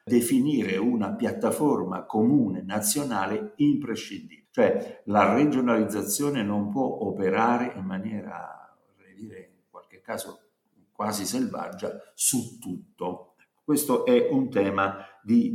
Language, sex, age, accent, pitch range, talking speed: Italian, male, 60-79, native, 100-135 Hz, 110 wpm